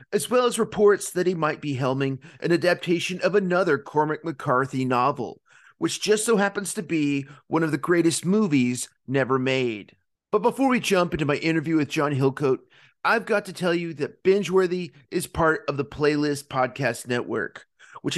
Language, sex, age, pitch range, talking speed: English, male, 30-49, 145-190 Hz, 180 wpm